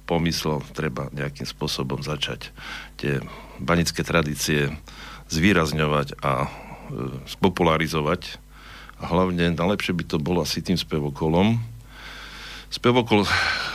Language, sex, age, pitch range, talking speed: Slovak, male, 60-79, 75-90 Hz, 90 wpm